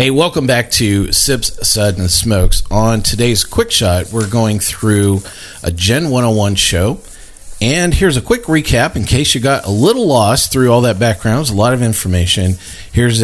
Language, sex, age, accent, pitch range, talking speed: English, male, 40-59, American, 90-110 Hz, 195 wpm